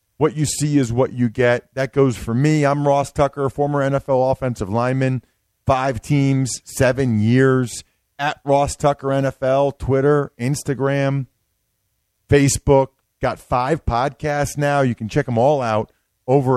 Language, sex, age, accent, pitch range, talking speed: English, male, 40-59, American, 110-140 Hz, 145 wpm